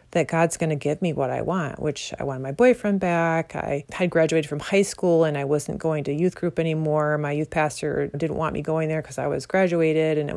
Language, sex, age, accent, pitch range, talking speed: English, female, 30-49, American, 150-180 Hz, 250 wpm